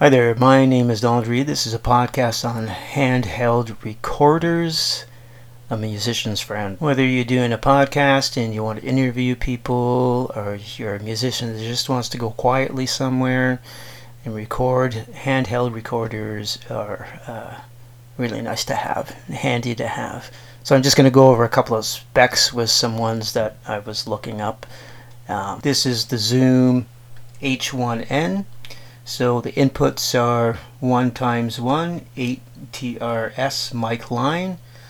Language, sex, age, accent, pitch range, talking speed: English, male, 40-59, American, 115-130 Hz, 150 wpm